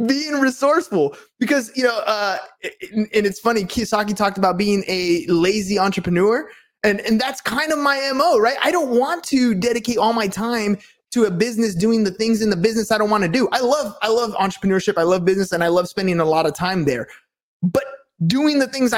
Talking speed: 210 wpm